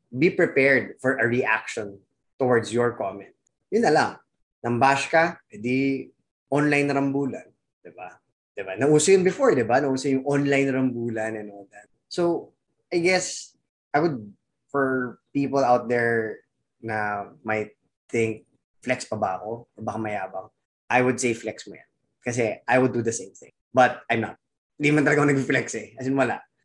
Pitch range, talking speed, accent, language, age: 115-135 Hz, 160 wpm, Filipino, English, 20-39